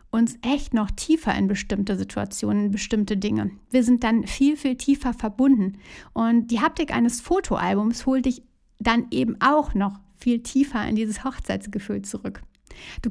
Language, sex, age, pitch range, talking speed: German, female, 60-79, 215-255 Hz, 160 wpm